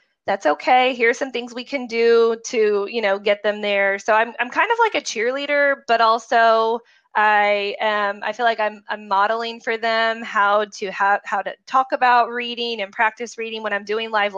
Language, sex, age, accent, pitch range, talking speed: English, female, 20-39, American, 205-240 Hz, 210 wpm